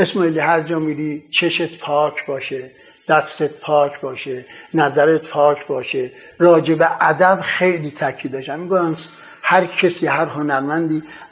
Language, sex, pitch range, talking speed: Persian, male, 150-185 Hz, 115 wpm